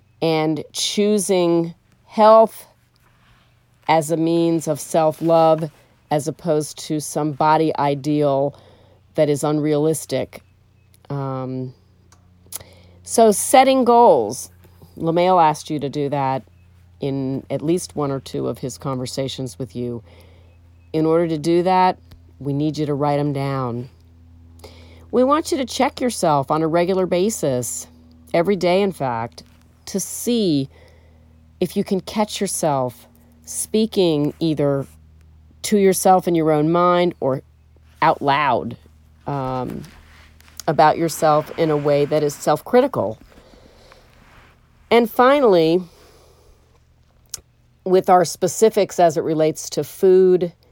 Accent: American